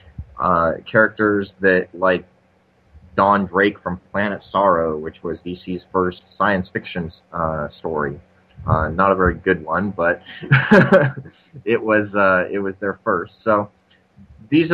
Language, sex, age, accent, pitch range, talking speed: English, male, 30-49, American, 90-105 Hz, 135 wpm